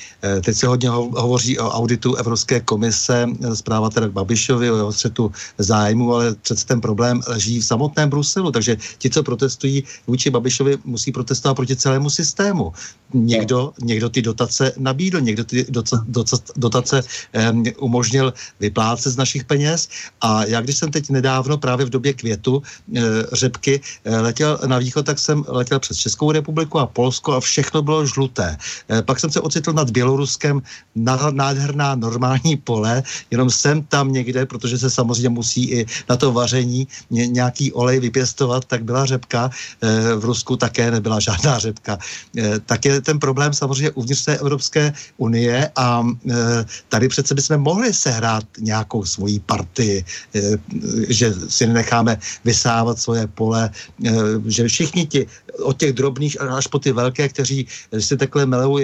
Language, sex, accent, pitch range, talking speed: Czech, male, native, 115-135 Hz, 155 wpm